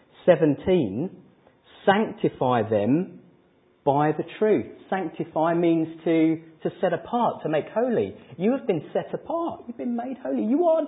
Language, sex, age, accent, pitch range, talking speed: English, male, 30-49, British, 145-210 Hz, 145 wpm